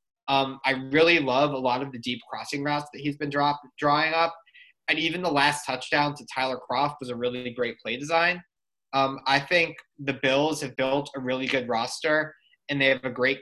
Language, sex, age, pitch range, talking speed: English, male, 20-39, 130-155 Hz, 205 wpm